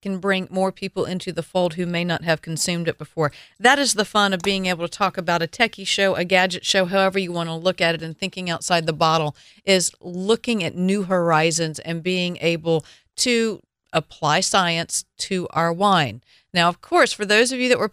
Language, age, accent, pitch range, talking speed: English, 50-69, American, 175-215 Hz, 220 wpm